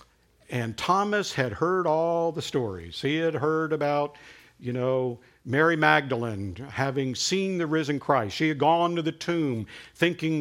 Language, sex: English, male